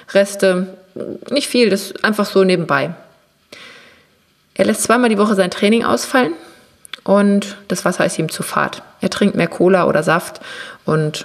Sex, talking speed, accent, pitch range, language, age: female, 160 wpm, German, 170-210 Hz, German, 30-49